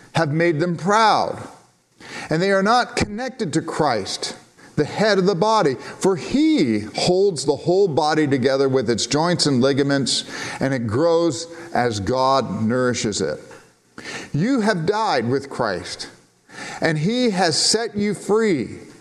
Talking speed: 145 wpm